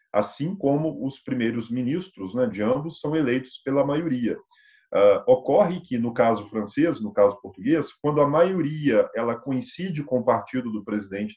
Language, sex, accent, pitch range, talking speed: Portuguese, male, Brazilian, 120-170 Hz, 165 wpm